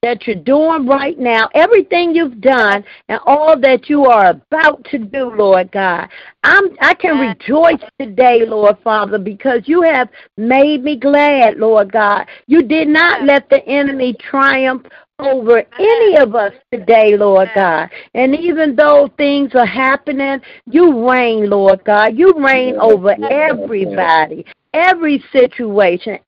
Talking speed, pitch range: 140 wpm, 225-320 Hz